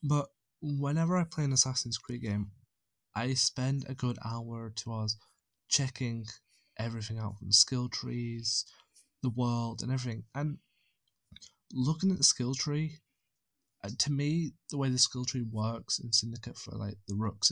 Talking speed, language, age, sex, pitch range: 160 wpm, English, 20-39, male, 110-130 Hz